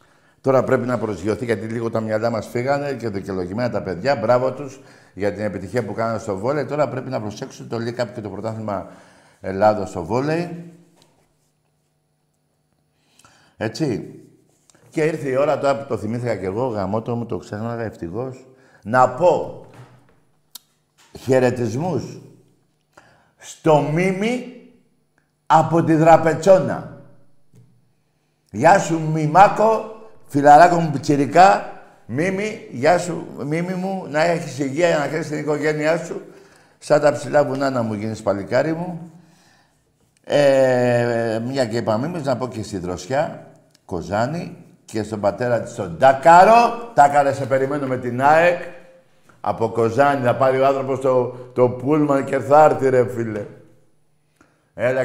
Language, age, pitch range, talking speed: Greek, 50-69, 120-155 Hz, 135 wpm